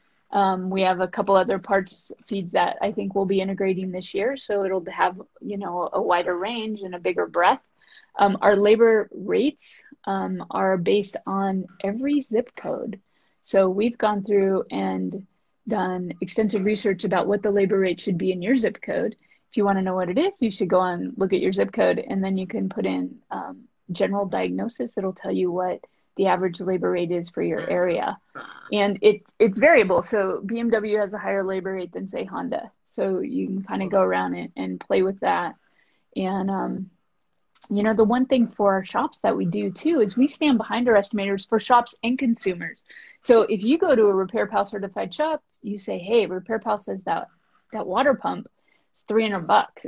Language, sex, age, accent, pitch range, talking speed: English, female, 20-39, American, 190-220 Hz, 205 wpm